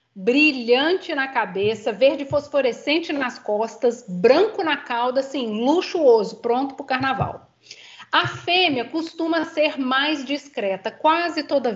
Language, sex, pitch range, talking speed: Portuguese, female, 240-310 Hz, 125 wpm